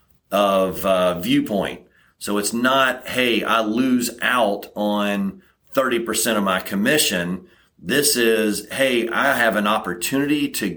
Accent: American